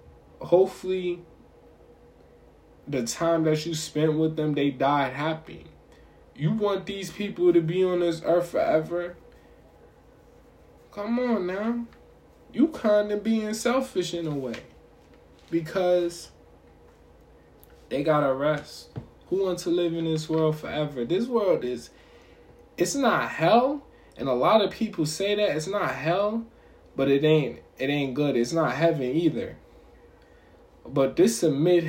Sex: male